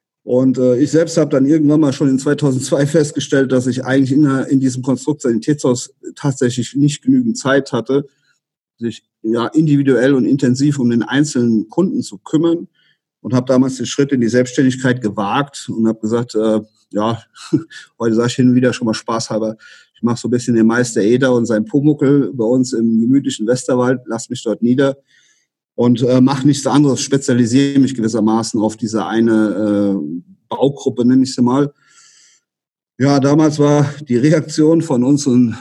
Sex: male